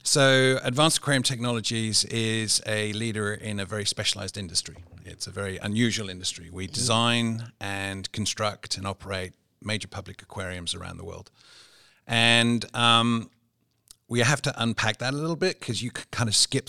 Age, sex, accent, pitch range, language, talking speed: 40-59, male, British, 100-120 Hz, English, 160 wpm